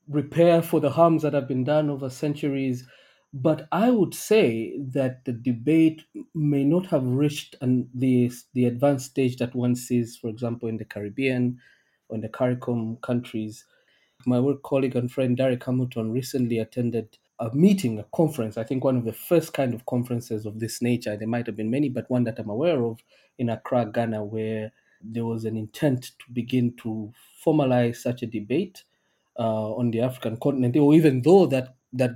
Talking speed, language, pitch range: 185 wpm, English, 115-140 Hz